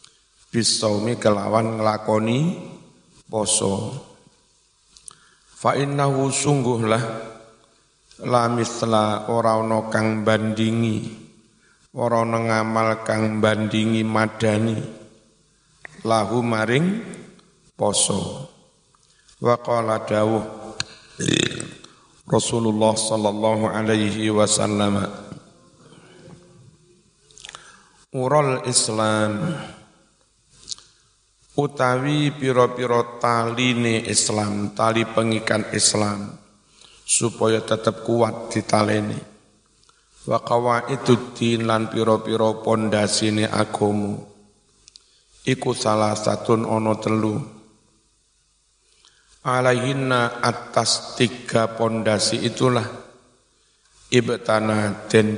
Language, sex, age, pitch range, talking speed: Indonesian, male, 50-69, 110-120 Hz, 60 wpm